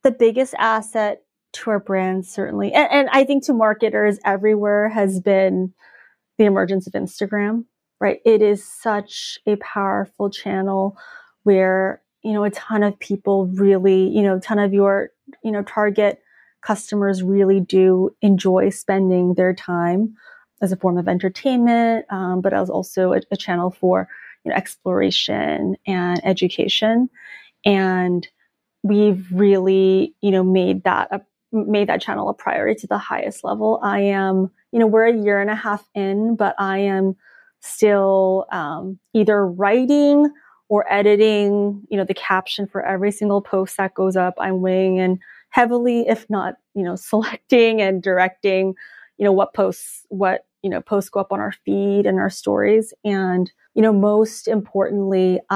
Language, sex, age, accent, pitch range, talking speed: English, female, 30-49, American, 190-215 Hz, 160 wpm